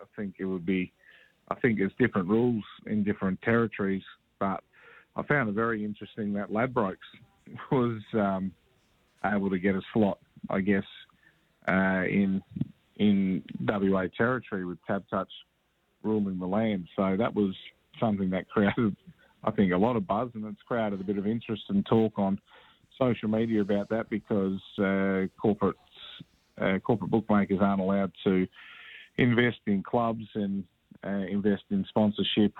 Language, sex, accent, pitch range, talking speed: English, male, Australian, 100-115 Hz, 155 wpm